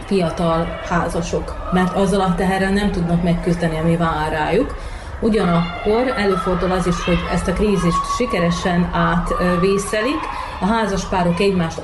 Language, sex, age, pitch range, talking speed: Hungarian, female, 30-49, 175-205 Hz, 125 wpm